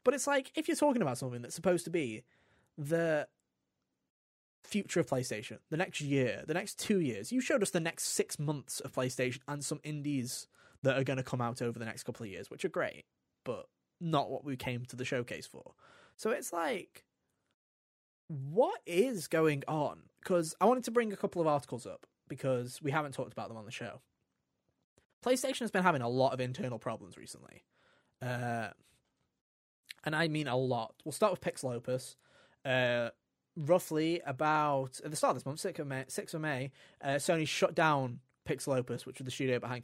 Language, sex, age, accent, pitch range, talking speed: English, male, 20-39, British, 125-165 Hz, 200 wpm